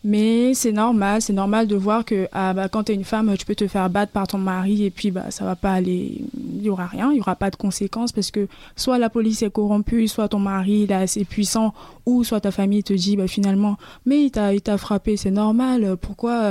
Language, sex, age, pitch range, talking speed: French, female, 20-39, 195-230 Hz, 260 wpm